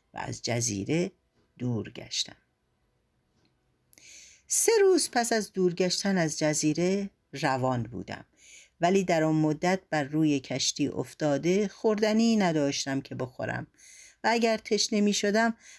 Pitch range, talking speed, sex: 145-215 Hz, 115 wpm, female